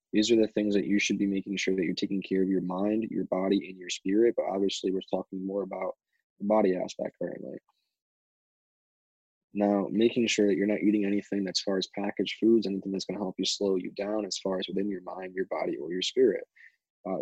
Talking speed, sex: 230 wpm, male